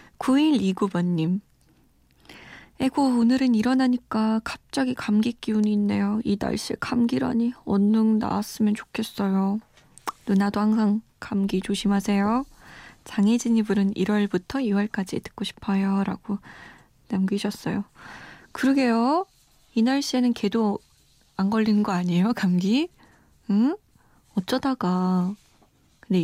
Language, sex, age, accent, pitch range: Korean, female, 20-39, native, 195-240 Hz